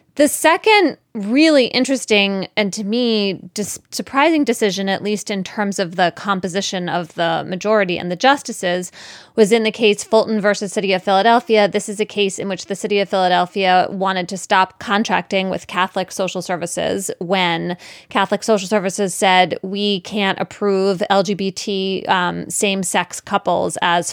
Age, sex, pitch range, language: 20-39, female, 190-235 Hz, English